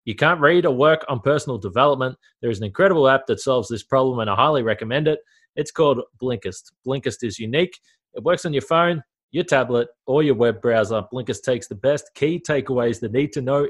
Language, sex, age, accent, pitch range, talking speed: English, male, 20-39, Australian, 125-160 Hz, 215 wpm